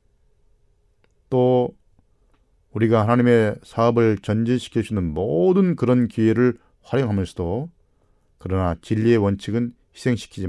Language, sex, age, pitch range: Korean, male, 40-59, 100-130 Hz